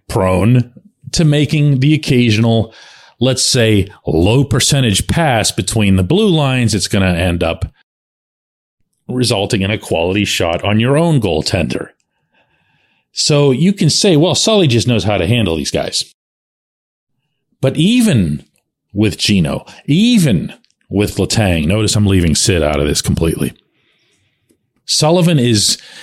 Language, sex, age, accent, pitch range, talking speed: English, male, 40-59, American, 95-145 Hz, 135 wpm